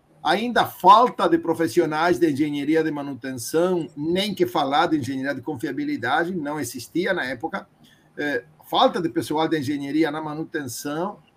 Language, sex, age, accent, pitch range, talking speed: Portuguese, male, 50-69, Brazilian, 145-180 Hz, 135 wpm